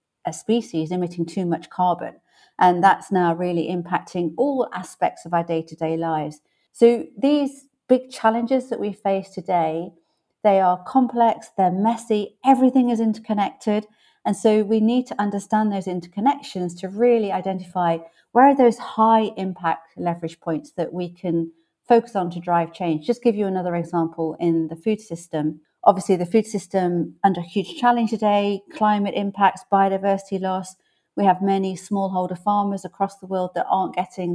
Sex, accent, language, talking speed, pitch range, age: female, British, English, 160 wpm, 175-215 Hz, 40-59